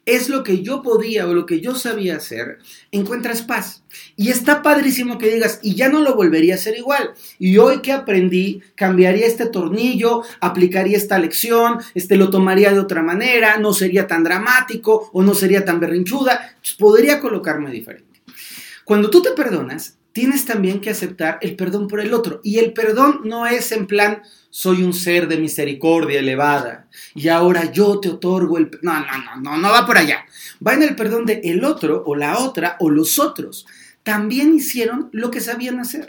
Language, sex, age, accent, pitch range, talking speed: Spanish, male, 40-59, Mexican, 180-235 Hz, 190 wpm